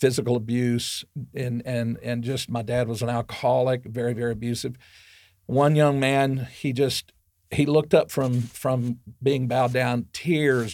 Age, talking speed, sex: 50-69, 155 wpm, male